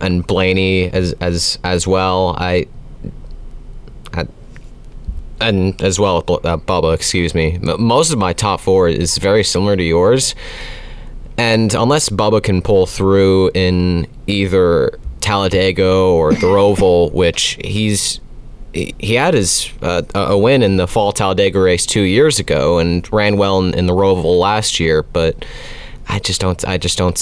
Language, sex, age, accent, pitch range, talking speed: English, male, 30-49, American, 90-105 Hz, 160 wpm